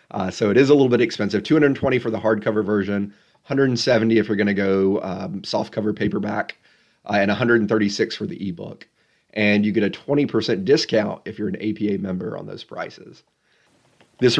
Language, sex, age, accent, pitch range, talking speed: English, male, 30-49, American, 100-120 Hz, 180 wpm